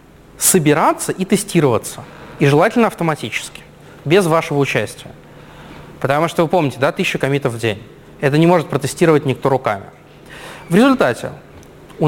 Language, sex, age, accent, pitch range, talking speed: Russian, male, 20-39, native, 135-185 Hz, 135 wpm